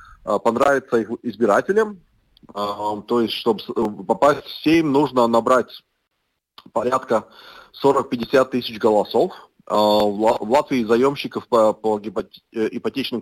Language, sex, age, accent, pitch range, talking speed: Russian, male, 30-49, native, 110-135 Hz, 90 wpm